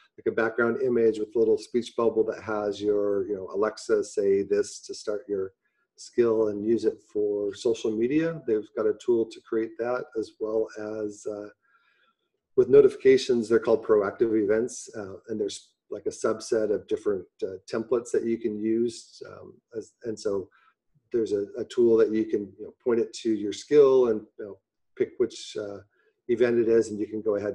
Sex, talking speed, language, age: male, 195 wpm, English, 40-59